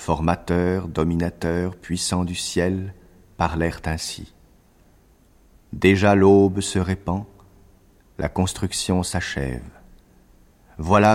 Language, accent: French, French